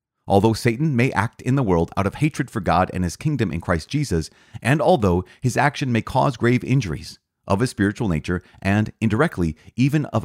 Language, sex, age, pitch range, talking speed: English, male, 30-49, 80-120 Hz, 200 wpm